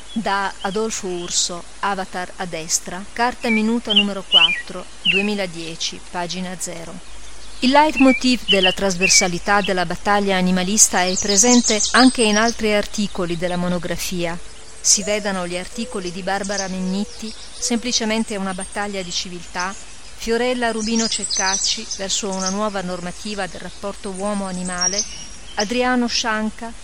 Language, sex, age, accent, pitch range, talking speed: Italian, female, 40-59, native, 180-220 Hz, 115 wpm